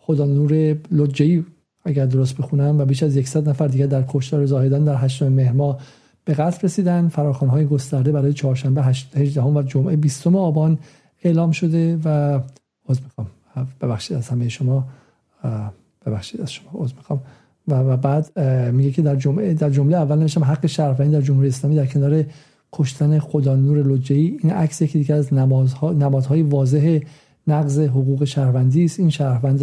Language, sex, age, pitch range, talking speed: Persian, male, 50-69, 135-155 Hz, 155 wpm